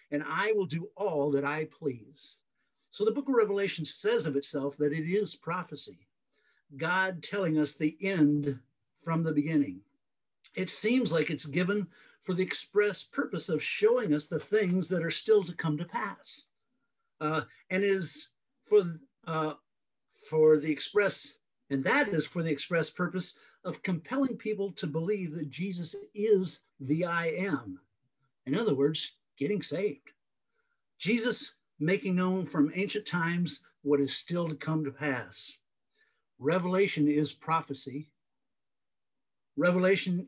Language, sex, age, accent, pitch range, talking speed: English, male, 50-69, American, 150-200 Hz, 145 wpm